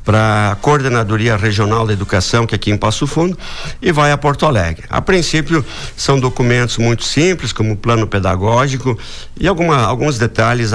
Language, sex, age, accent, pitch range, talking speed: Portuguese, male, 60-79, Brazilian, 110-125 Hz, 170 wpm